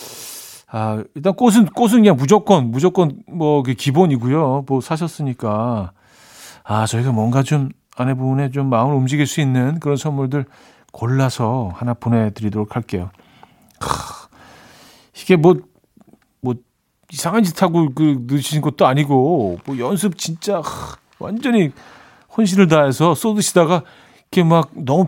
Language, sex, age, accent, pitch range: Korean, male, 40-59, native, 115-160 Hz